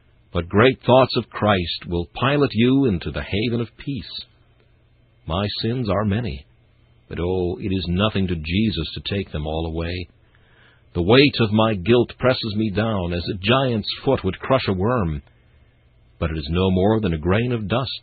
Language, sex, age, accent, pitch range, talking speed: English, male, 60-79, American, 85-120 Hz, 185 wpm